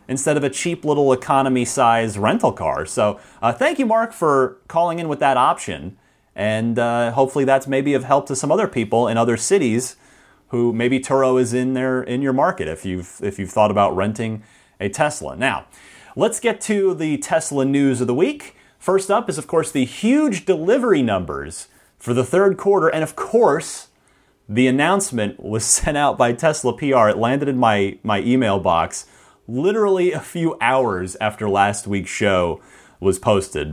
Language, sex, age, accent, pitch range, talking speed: English, male, 30-49, American, 105-150 Hz, 185 wpm